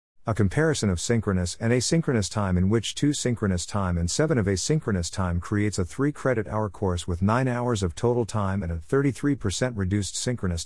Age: 50-69